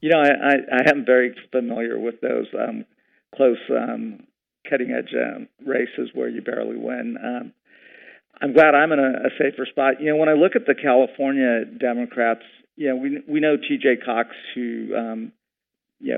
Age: 50-69